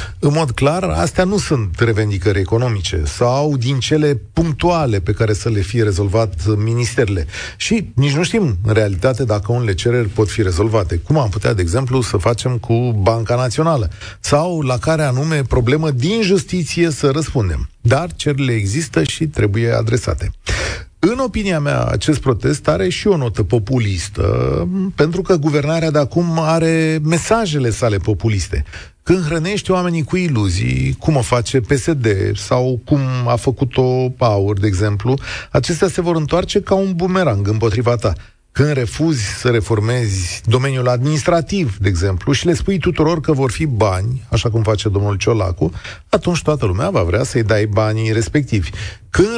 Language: Romanian